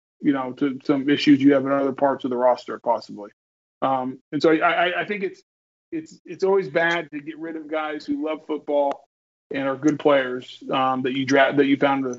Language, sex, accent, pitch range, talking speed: English, male, American, 145-170 Hz, 225 wpm